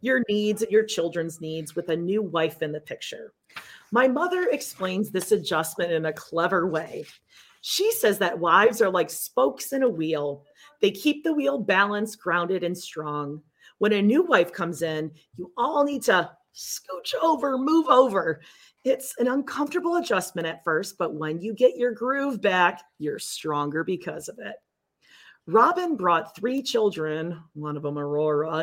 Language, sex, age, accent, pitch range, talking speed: English, female, 40-59, American, 165-265 Hz, 170 wpm